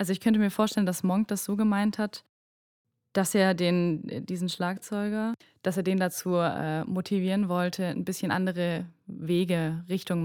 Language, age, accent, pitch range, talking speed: English, 20-39, German, 170-195 Hz, 165 wpm